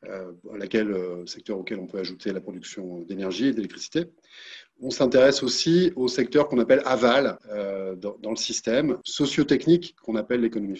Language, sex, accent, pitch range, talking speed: French, male, French, 105-140 Hz, 165 wpm